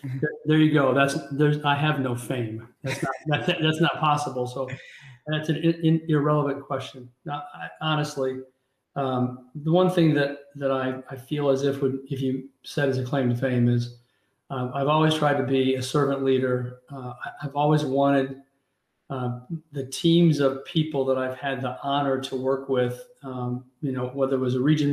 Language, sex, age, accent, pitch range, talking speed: English, male, 40-59, American, 130-145 Hz, 195 wpm